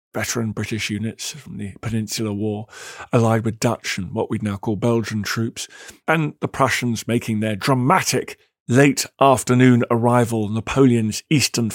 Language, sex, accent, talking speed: English, male, British, 150 wpm